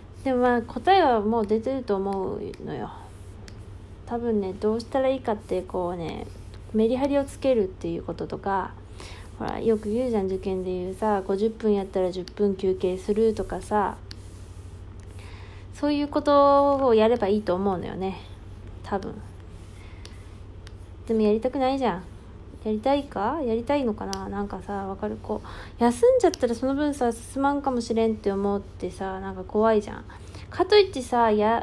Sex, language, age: female, Japanese, 20-39